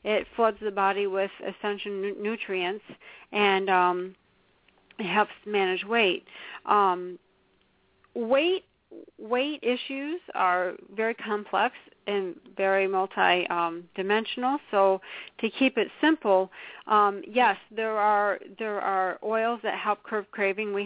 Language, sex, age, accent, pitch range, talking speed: English, female, 50-69, American, 195-230 Hz, 120 wpm